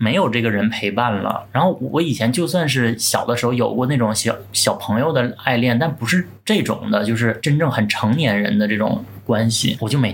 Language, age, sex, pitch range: Chinese, 20-39, male, 110-135 Hz